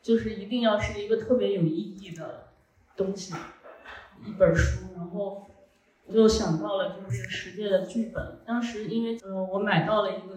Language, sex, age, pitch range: Chinese, female, 30-49, 180-220 Hz